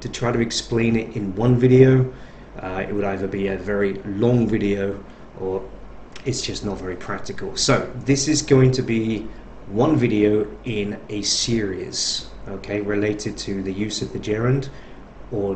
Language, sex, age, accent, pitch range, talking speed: English, male, 40-59, British, 105-135 Hz, 165 wpm